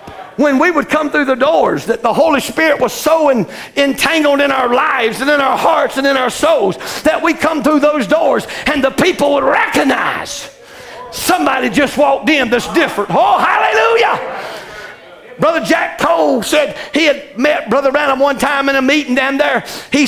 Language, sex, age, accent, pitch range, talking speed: English, male, 50-69, American, 275-310 Hz, 185 wpm